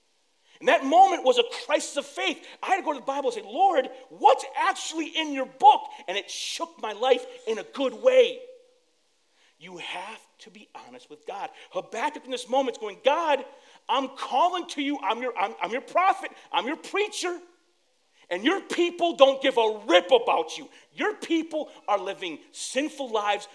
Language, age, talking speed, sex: English, 40-59, 190 wpm, male